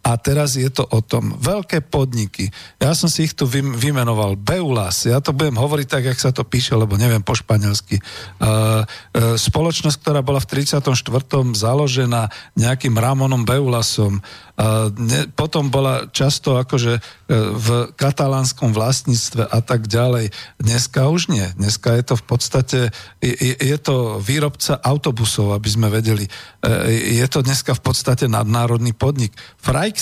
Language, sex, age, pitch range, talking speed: Slovak, male, 50-69, 115-140 Hz, 155 wpm